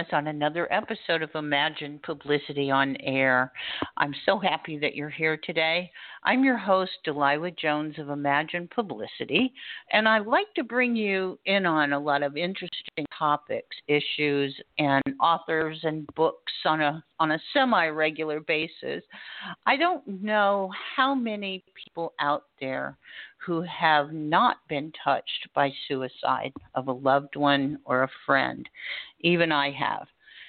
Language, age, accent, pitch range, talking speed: English, 50-69, American, 150-195 Hz, 140 wpm